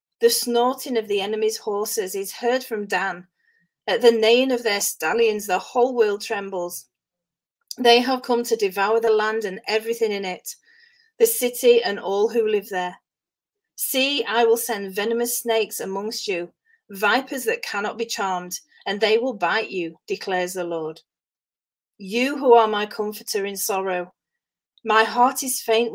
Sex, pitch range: female, 195-245 Hz